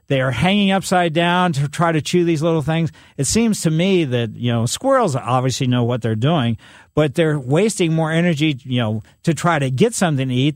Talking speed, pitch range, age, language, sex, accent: 220 wpm, 130-165 Hz, 50-69, English, male, American